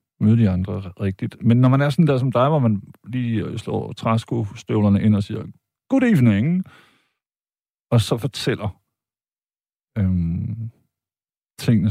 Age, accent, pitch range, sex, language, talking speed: 50-69, native, 100-125 Hz, male, Danish, 135 wpm